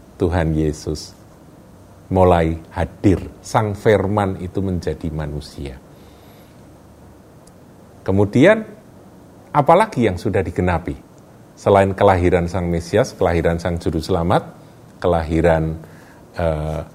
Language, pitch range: Indonesian, 85-115 Hz